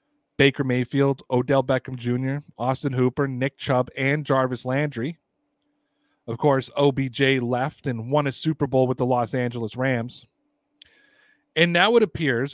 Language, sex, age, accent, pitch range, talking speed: English, male, 30-49, American, 130-170 Hz, 145 wpm